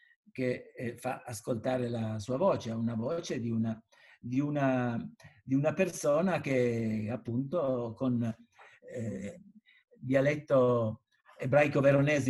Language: Italian